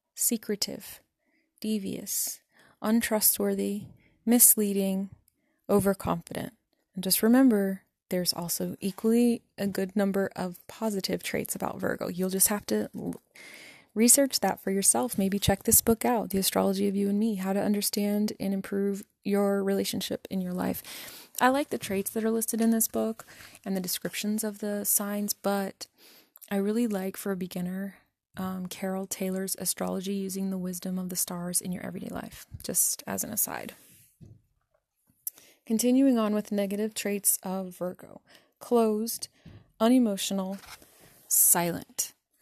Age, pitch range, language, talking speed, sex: 20-39, 190-220 Hz, English, 140 wpm, female